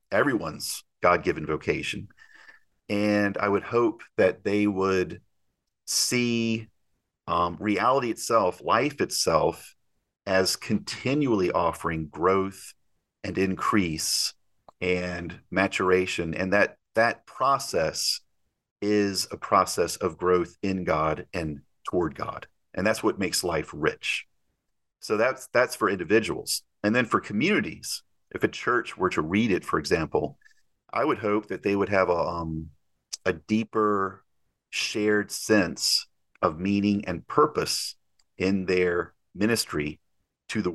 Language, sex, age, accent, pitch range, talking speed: English, male, 40-59, American, 85-105 Hz, 125 wpm